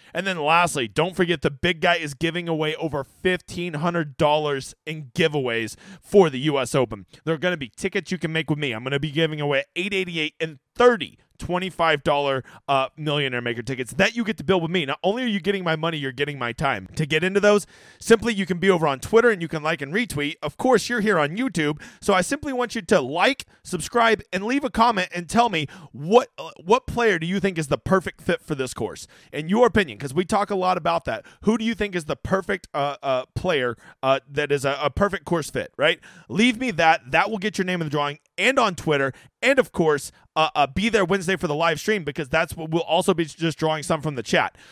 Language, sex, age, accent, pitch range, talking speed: English, male, 30-49, American, 145-195 Hz, 245 wpm